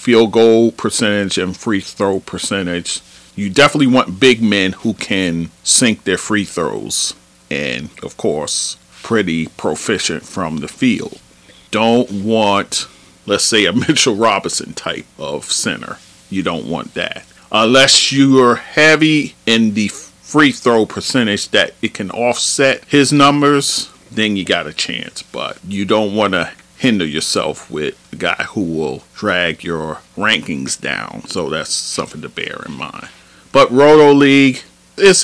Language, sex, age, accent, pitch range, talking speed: English, male, 40-59, American, 95-130 Hz, 150 wpm